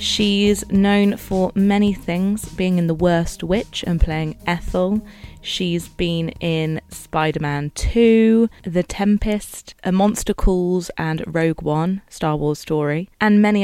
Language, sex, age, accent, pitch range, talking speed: English, female, 20-39, British, 155-195 Hz, 130 wpm